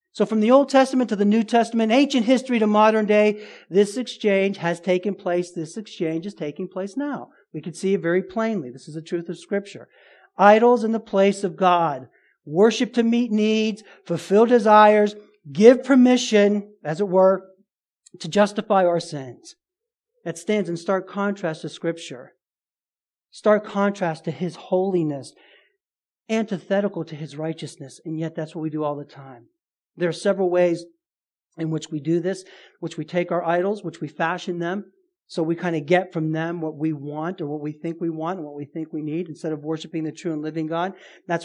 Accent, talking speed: American, 190 wpm